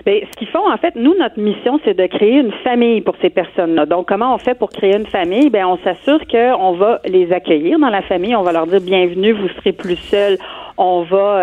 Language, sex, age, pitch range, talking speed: French, female, 40-59, 185-235 Hz, 250 wpm